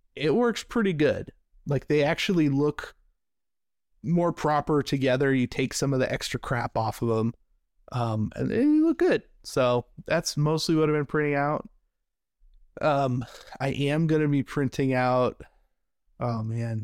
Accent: American